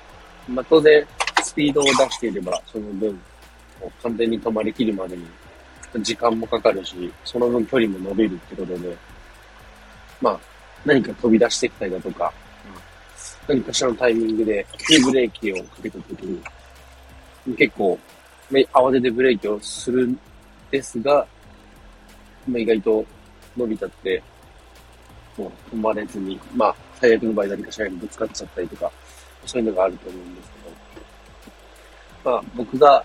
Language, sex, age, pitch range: Japanese, male, 40-59, 85-115 Hz